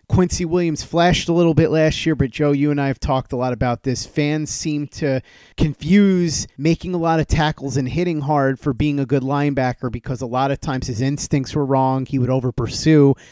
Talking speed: 215 wpm